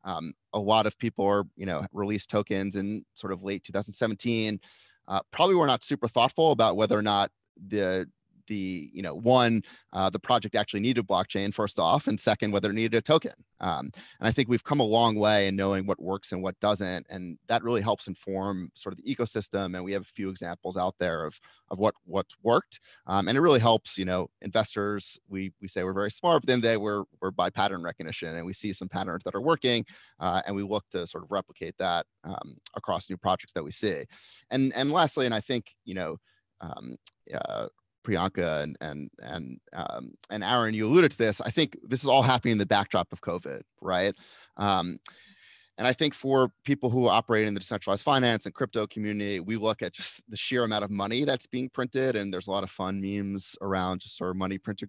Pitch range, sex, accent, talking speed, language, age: 95-115 Hz, male, American, 220 wpm, English, 30-49